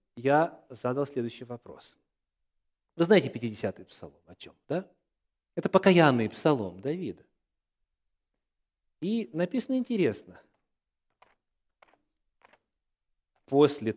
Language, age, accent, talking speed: Russian, 40-59, native, 80 wpm